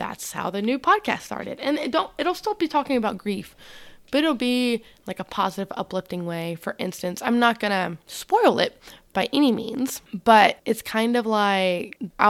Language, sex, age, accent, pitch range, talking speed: English, female, 20-39, American, 195-245 Hz, 180 wpm